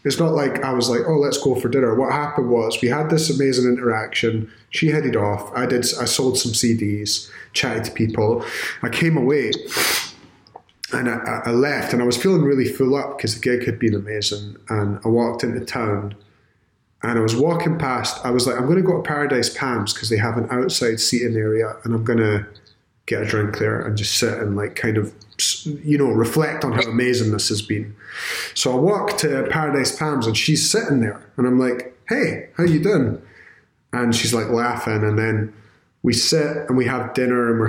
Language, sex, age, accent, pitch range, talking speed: English, male, 30-49, British, 110-135 Hz, 210 wpm